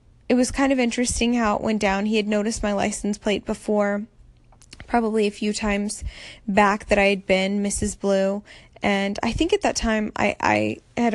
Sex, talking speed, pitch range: female, 195 wpm, 200-230 Hz